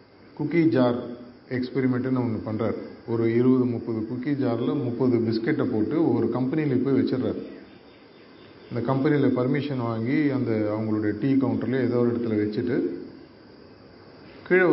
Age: 40-59